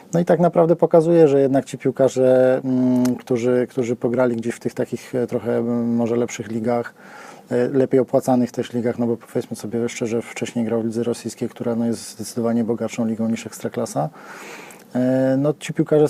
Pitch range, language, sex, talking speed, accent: 120-130 Hz, Polish, male, 170 wpm, native